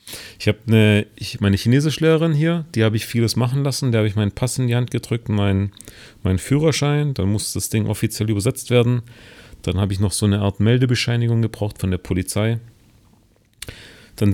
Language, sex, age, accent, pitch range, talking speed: German, male, 40-59, German, 105-125 Hz, 185 wpm